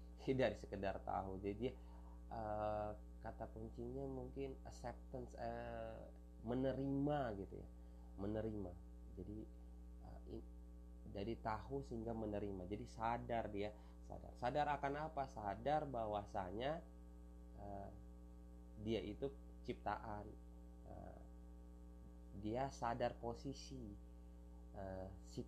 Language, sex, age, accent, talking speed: Indonesian, male, 30-49, native, 95 wpm